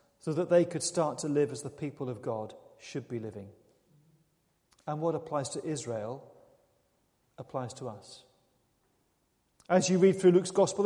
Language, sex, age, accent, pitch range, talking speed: English, male, 40-59, British, 145-190 Hz, 160 wpm